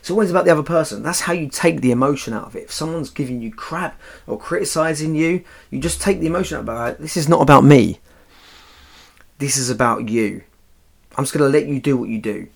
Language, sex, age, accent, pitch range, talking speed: English, male, 30-49, British, 85-140 Hz, 240 wpm